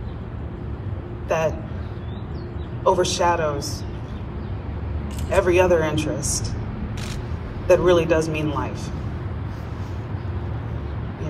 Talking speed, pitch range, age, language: 60 wpm, 85-120 Hz, 30-49, English